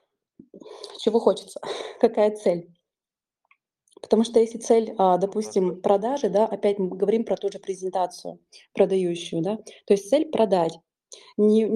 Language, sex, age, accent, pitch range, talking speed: Russian, female, 20-39, native, 190-220 Hz, 130 wpm